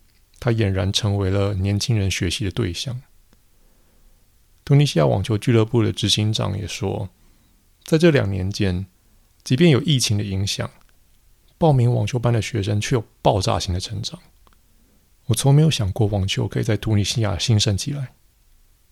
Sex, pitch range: male, 95-120 Hz